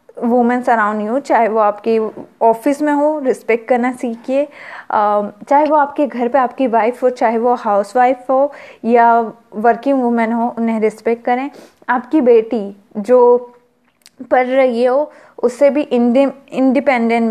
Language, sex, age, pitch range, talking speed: Hindi, female, 20-39, 230-275 Hz, 140 wpm